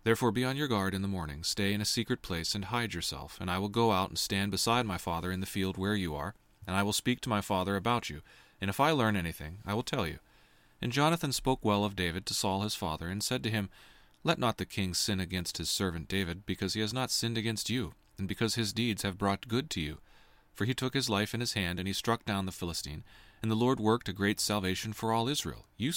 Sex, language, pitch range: male, English, 95-115 Hz